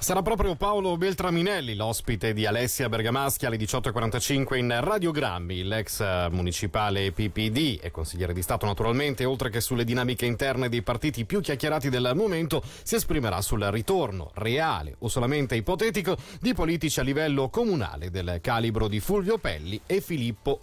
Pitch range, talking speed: 110-165 Hz, 150 wpm